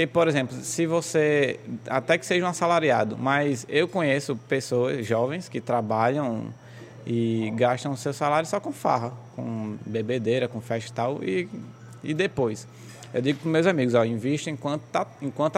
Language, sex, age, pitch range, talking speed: Portuguese, male, 20-39, 120-160 Hz, 155 wpm